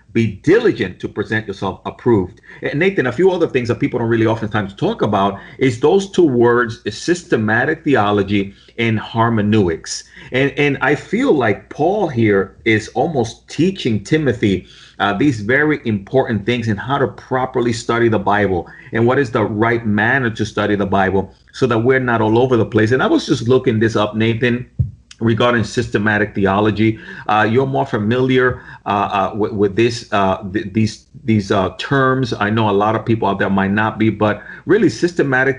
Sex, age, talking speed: male, 40-59, 185 wpm